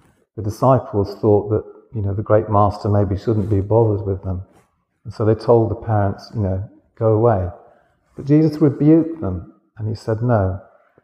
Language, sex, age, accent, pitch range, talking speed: English, male, 50-69, British, 100-120 Hz, 180 wpm